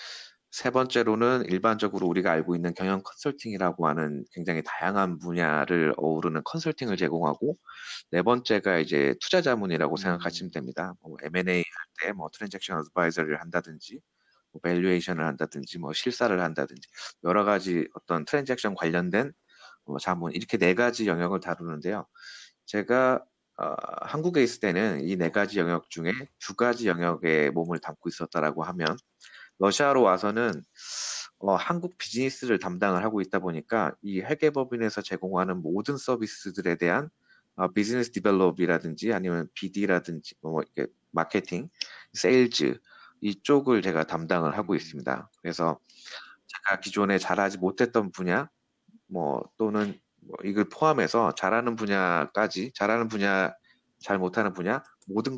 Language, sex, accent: Korean, male, native